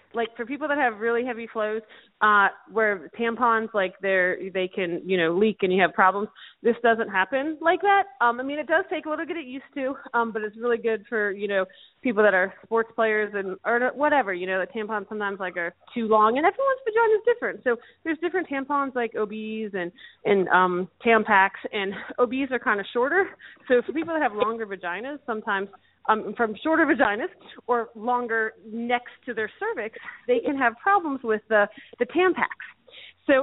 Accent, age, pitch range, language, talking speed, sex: American, 30-49, 205-280 Hz, English, 205 wpm, female